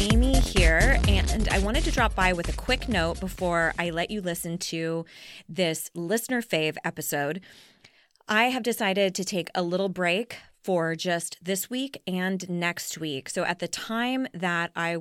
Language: English